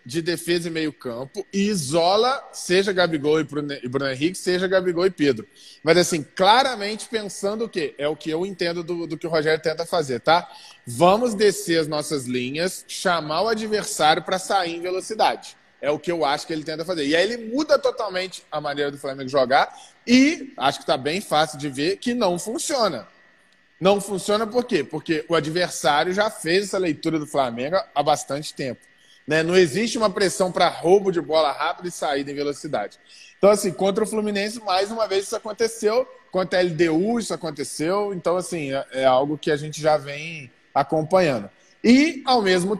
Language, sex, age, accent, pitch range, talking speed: Portuguese, male, 20-39, Brazilian, 155-210 Hz, 190 wpm